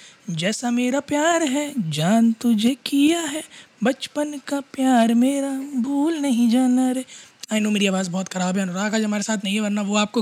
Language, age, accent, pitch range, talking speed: Hindi, 20-39, native, 185-230 Hz, 165 wpm